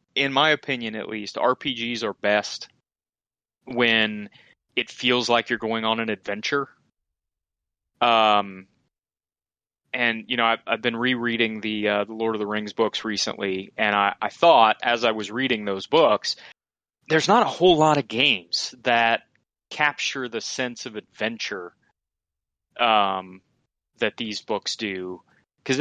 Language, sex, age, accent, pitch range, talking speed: English, male, 20-39, American, 100-125 Hz, 145 wpm